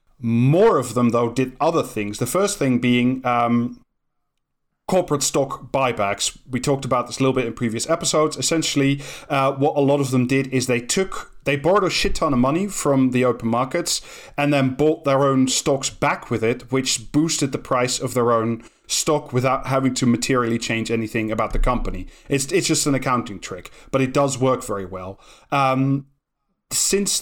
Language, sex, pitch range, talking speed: English, male, 125-150 Hz, 190 wpm